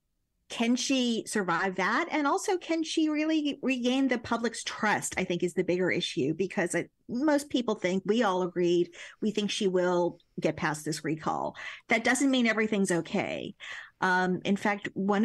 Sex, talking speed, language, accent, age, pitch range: female, 175 wpm, English, American, 50-69, 180-220 Hz